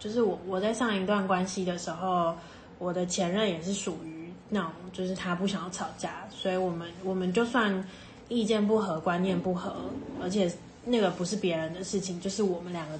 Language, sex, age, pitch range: Chinese, female, 20-39, 180-205 Hz